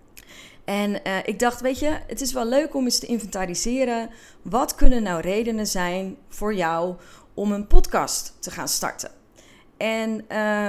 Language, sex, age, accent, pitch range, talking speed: Dutch, female, 30-49, Dutch, 185-235 Hz, 165 wpm